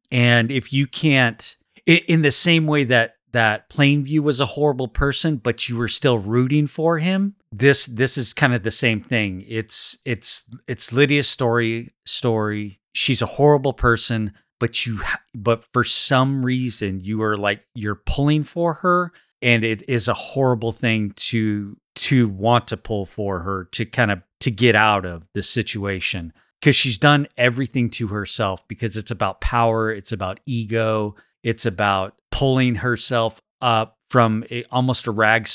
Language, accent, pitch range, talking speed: English, American, 105-125 Hz, 165 wpm